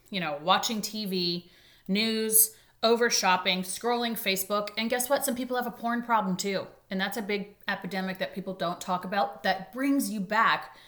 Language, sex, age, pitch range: English, female, 30-49, 175-230 Hz